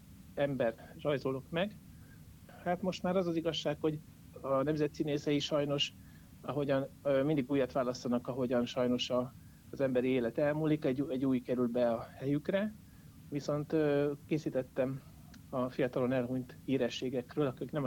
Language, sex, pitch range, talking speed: Hungarian, male, 130-150 Hz, 130 wpm